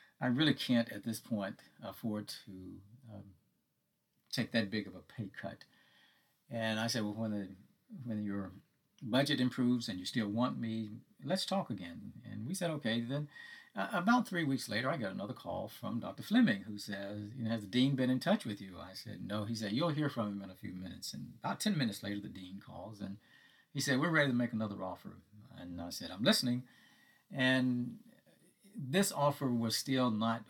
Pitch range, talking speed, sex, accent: 105-130 Hz, 205 wpm, male, American